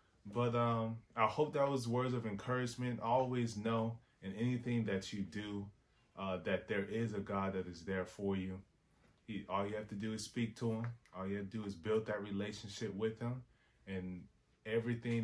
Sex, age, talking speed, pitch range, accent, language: male, 20-39, 195 wpm, 95-115 Hz, American, English